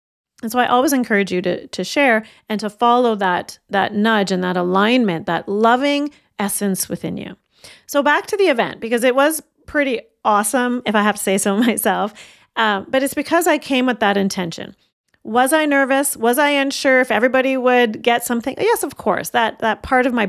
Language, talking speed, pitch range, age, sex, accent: English, 200 wpm, 200-265 Hz, 40-59, female, American